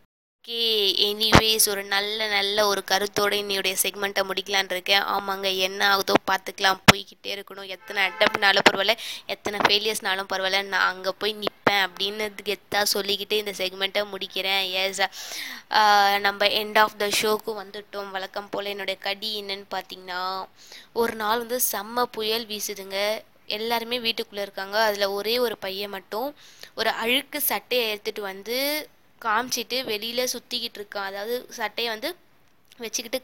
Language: Tamil